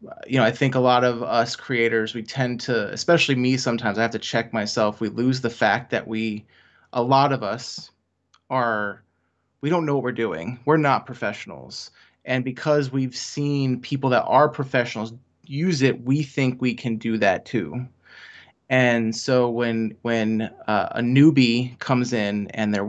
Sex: male